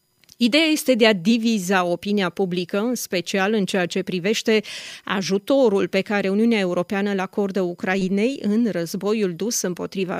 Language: Romanian